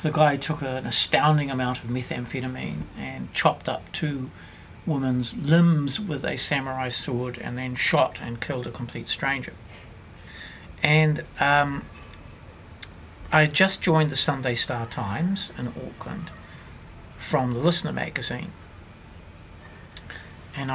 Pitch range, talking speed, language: 100-150 Hz, 125 wpm, English